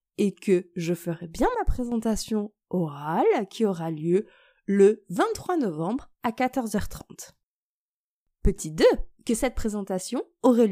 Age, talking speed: 20-39, 125 wpm